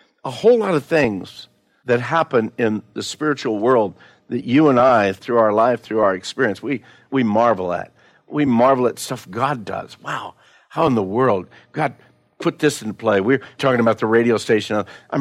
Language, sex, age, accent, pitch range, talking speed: English, male, 60-79, American, 115-165 Hz, 190 wpm